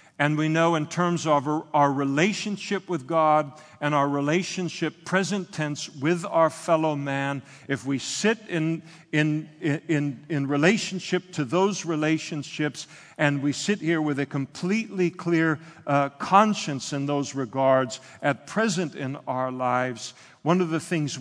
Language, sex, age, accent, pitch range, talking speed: English, male, 50-69, American, 140-175 Hz, 145 wpm